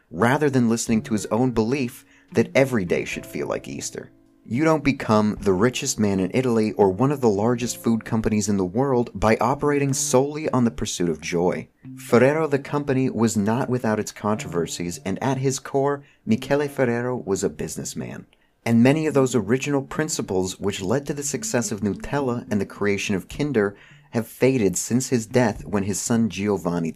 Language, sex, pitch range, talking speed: English, male, 105-135 Hz, 185 wpm